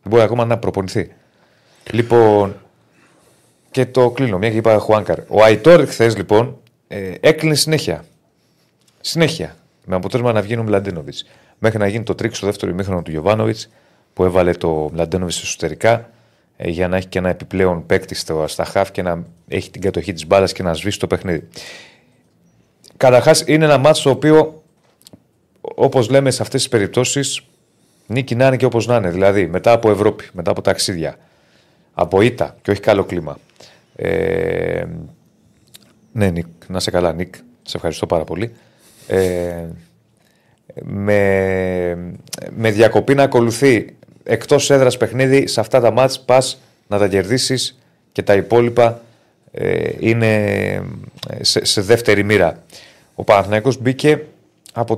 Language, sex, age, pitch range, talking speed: Greek, male, 30-49, 95-130 Hz, 145 wpm